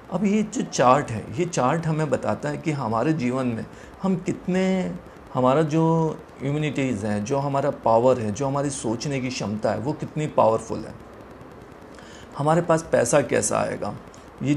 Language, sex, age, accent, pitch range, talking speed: Hindi, male, 40-59, native, 120-155 Hz, 165 wpm